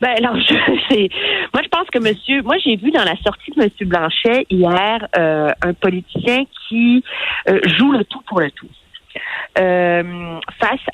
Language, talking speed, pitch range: French, 170 wpm, 175-260 Hz